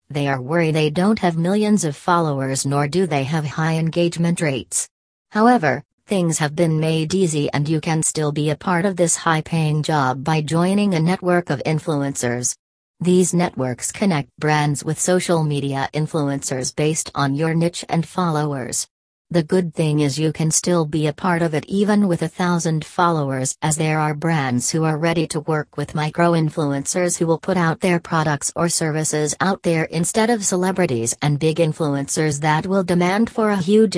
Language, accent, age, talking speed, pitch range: English, American, 40-59, 180 wpm, 150-175 Hz